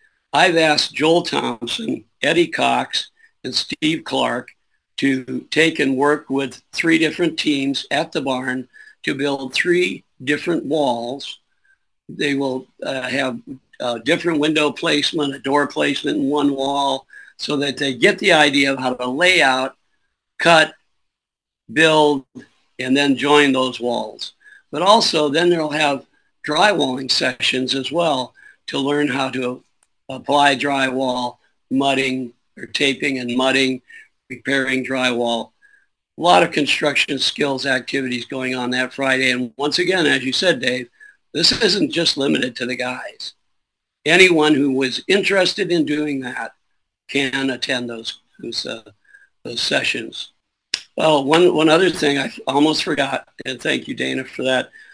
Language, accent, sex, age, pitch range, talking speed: English, American, male, 60-79, 130-160 Hz, 145 wpm